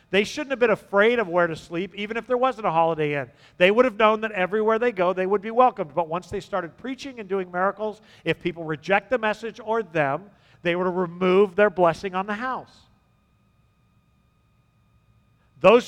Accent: American